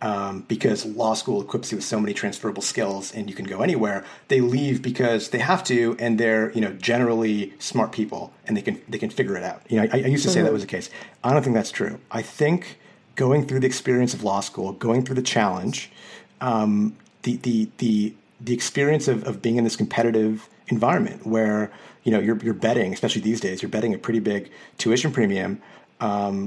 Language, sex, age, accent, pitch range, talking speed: English, male, 30-49, American, 100-120 Hz, 220 wpm